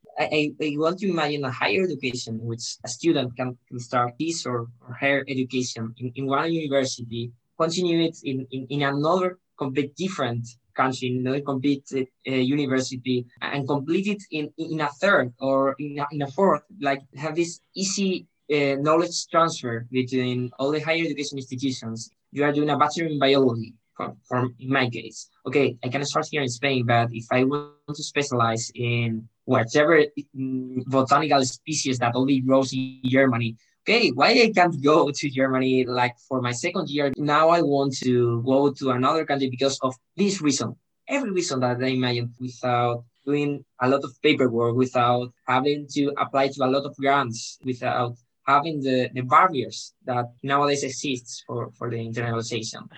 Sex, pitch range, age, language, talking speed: male, 125-150 Hz, 20-39, English, 170 wpm